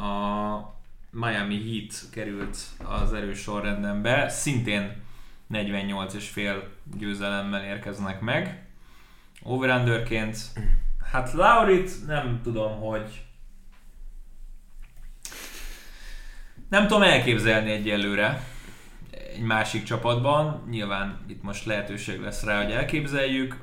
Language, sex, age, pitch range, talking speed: Hungarian, male, 20-39, 100-115 Hz, 85 wpm